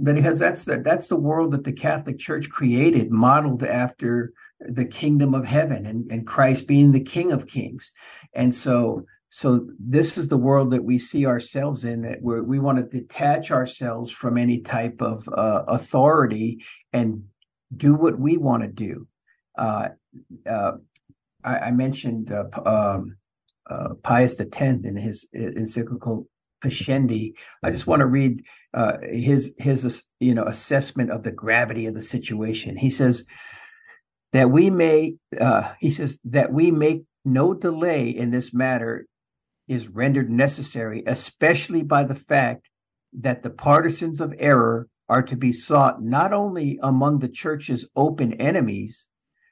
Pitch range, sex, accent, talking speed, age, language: 120-145 Hz, male, American, 155 wpm, 50-69, English